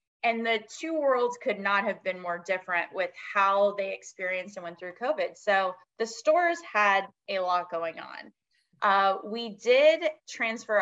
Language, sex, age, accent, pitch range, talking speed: English, female, 20-39, American, 190-240 Hz, 165 wpm